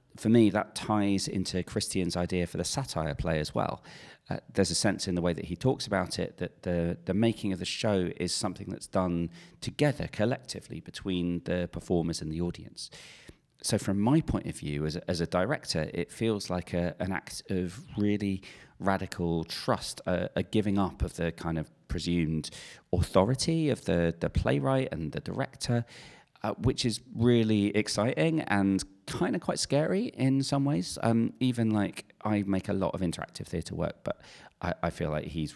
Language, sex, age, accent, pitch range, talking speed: English, male, 40-59, British, 85-115 Hz, 190 wpm